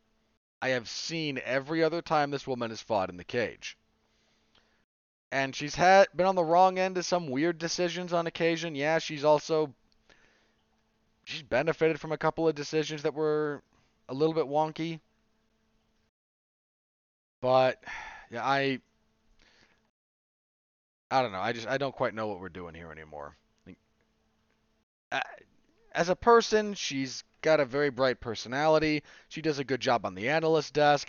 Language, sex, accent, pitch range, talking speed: English, male, American, 110-155 Hz, 155 wpm